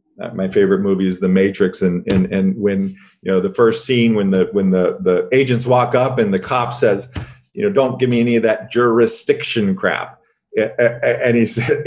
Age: 40-59